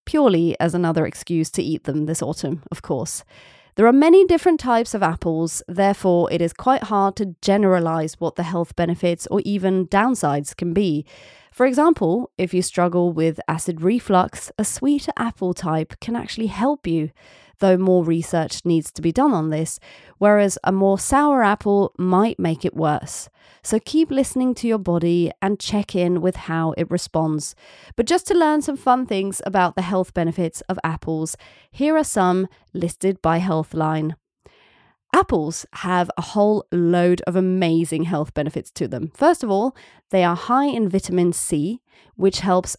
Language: English